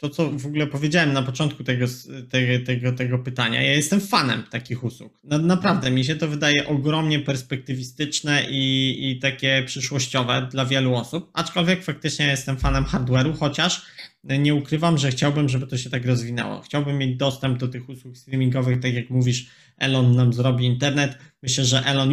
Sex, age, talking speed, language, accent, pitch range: male, 20-39, 165 wpm, Polish, native, 125-150 Hz